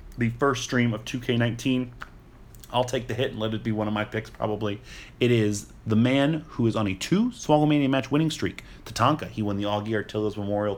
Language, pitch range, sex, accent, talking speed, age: English, 105-125 Hz, male, American, 210 wpm, 30-49